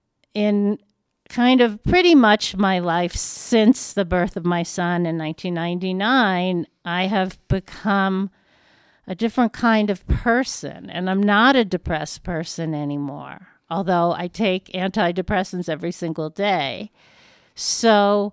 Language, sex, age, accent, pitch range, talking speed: English, female, 50-69, American, 170-215 Hz, 125 wpm